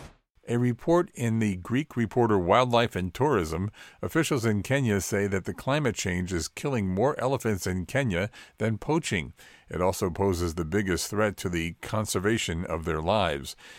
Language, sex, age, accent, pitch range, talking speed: English, male, 50-69, American, 90-115 Hz, 160 wpm